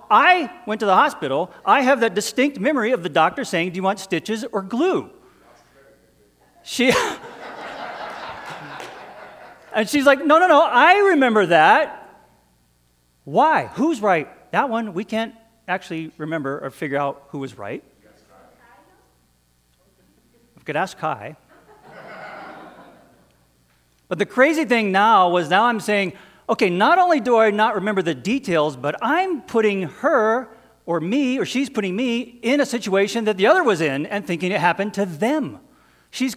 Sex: male